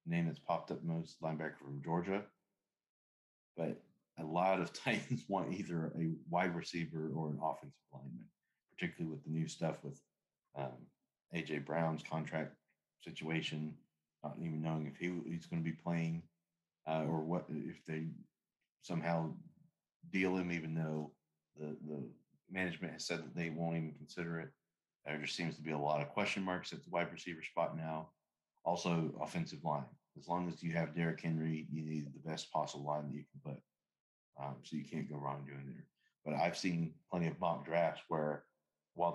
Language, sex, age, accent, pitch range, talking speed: English, male, 40-59, American, 75-85 Hz, 180 wpm